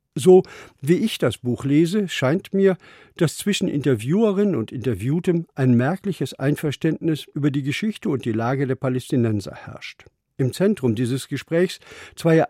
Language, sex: German, male